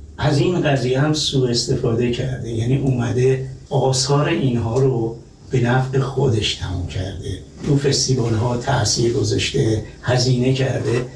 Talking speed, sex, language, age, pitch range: 130 wpm, male, Persian, 60-79, 115-140 Hz